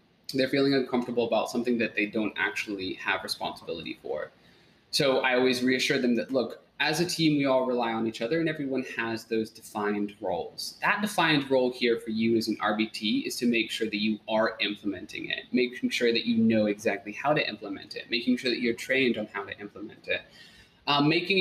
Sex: male